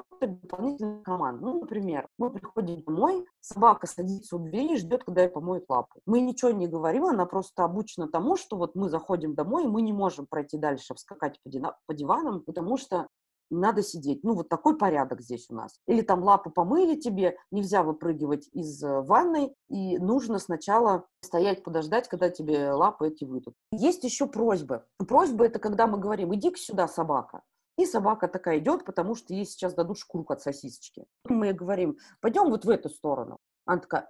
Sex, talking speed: female, 180 wpm